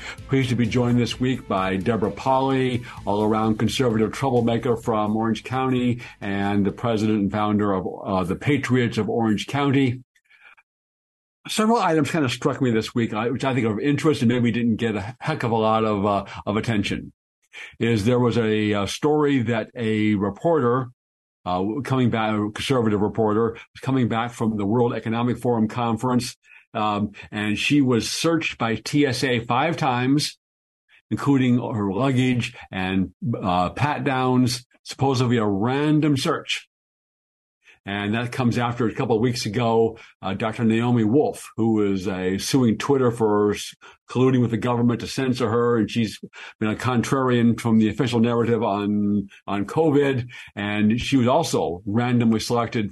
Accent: American